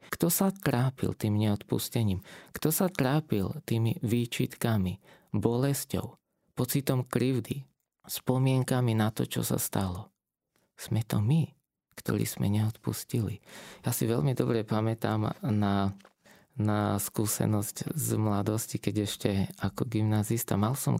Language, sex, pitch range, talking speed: Slovak, male, 105-130 Hz, 115 wpm